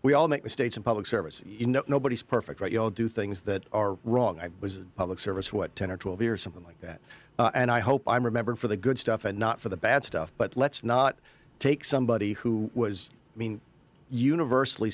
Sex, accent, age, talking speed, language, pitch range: male, American, 50-69, 235 wpm, English, 110-135 Hz